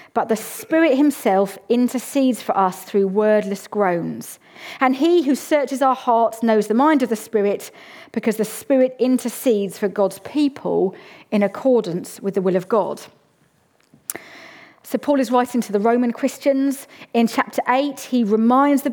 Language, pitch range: English, 225-285 Hz